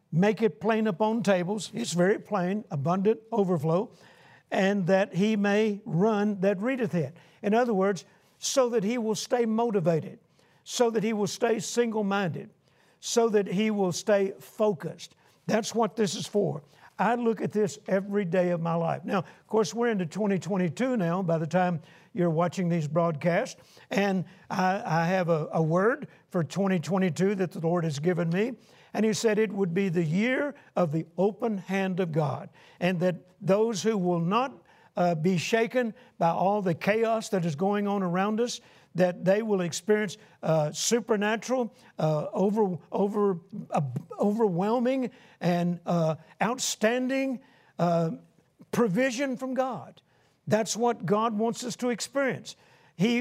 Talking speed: 160 wpm